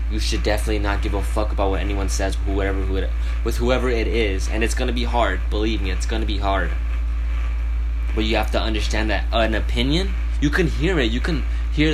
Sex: male